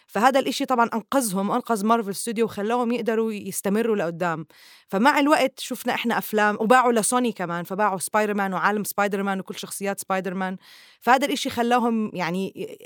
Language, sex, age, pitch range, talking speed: Arabic, female, 20-39, 190-240 Hz, 155 wpm